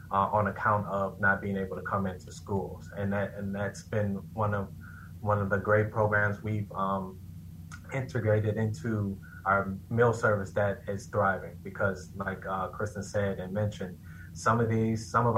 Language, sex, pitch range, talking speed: English, male, 95-105 Hz, 175 wpm